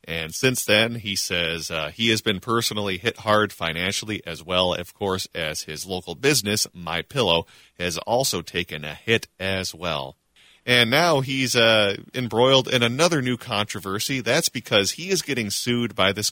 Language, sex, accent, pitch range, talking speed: English, male, American, 90-115 Hz, 170 wpm